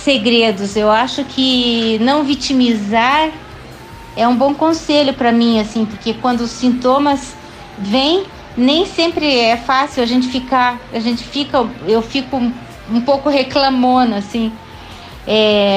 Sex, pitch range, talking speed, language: female, 225-285 Hz, 135 wpm, Portuguese